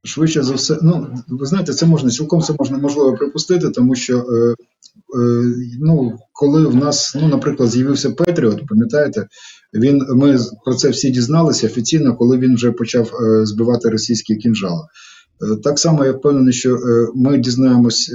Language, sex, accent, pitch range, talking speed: Ukrainian, male, native, 115-145 Hz, 165 wpm